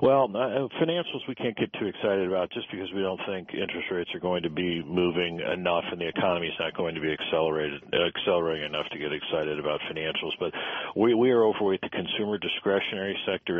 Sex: male